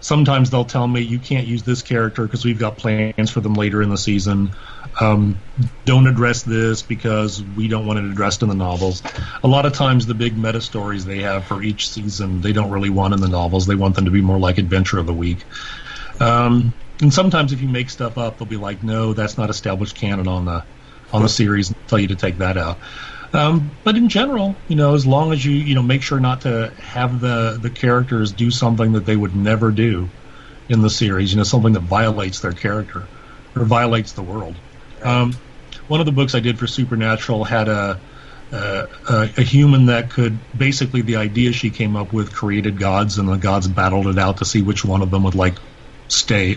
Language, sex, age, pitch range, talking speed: English, male, 40-59, 100-125 Hz, 220 wpm